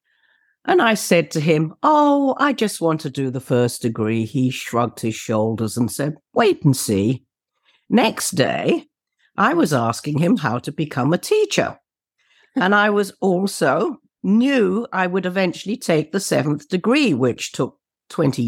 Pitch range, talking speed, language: 115-180 Hz, 160 wpm, English